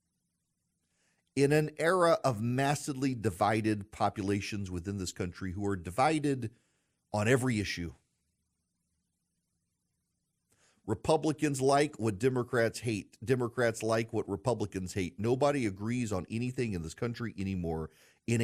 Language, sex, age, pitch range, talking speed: English, male, 40-59, 95-130 Hz, 115 wpm